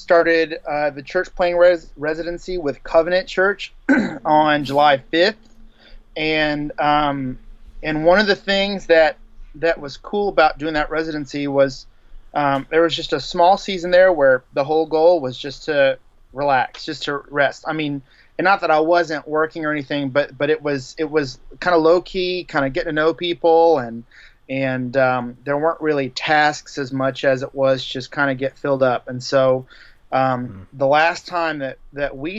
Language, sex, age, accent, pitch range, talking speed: English, male, 30-49, American, 135-165 Hz, 185 wpm